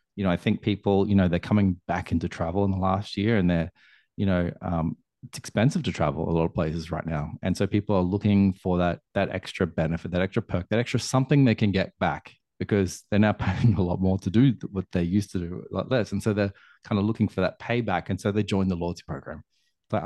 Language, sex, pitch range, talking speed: English, male, 95-110 Hz, 255 wpm